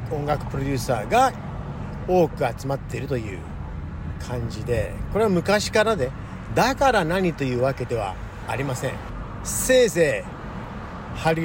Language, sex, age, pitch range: Japanese, male, 50-69, 105-160 Hz